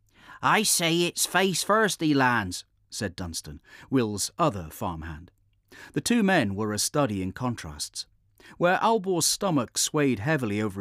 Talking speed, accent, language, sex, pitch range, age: 145 wpm, British, English, male, 100-150 Hz, 40-59